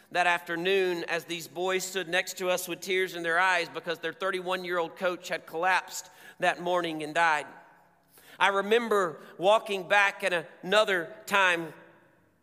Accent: American